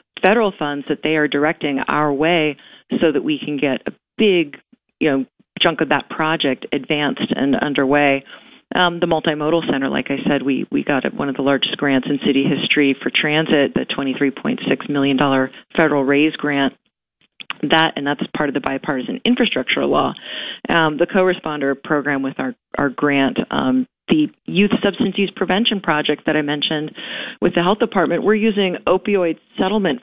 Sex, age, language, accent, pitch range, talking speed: female, 40-59, English, American, 145-195 Hz, 180 wpm